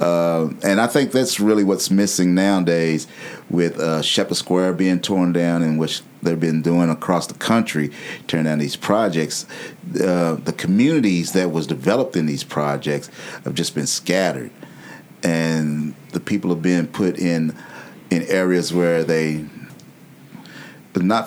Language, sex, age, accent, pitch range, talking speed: English, male, 40-59, American, 80-95 Hz, 150 wpm